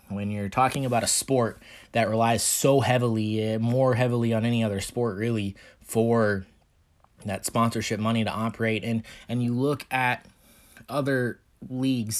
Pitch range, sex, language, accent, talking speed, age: 105-120 Hz, male, English, American, 150 wpm, 20-39